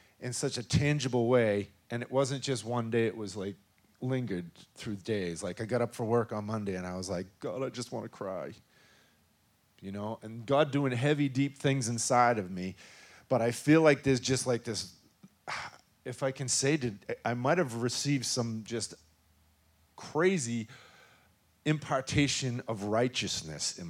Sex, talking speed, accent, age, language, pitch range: male, 180 wpm, American, 40-59, English, 110-140 Hz